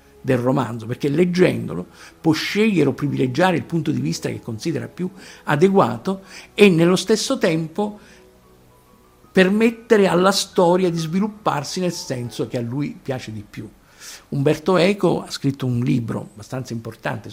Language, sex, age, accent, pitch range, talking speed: Italian, male, 50-69, native, 130-185 Hz, 140 wpm